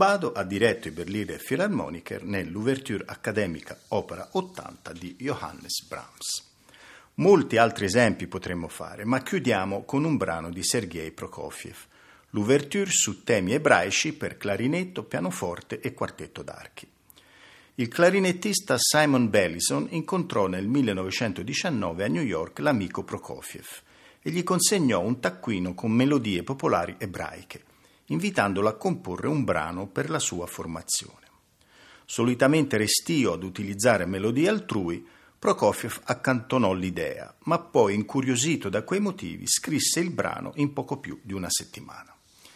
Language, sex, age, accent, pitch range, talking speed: Italian, male, 50-69, native, 95-140 Hz, 125 wpm